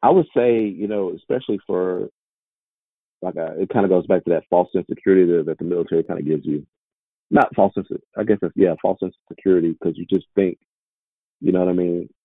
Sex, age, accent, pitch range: male, 30-49, American, 85-95 Hz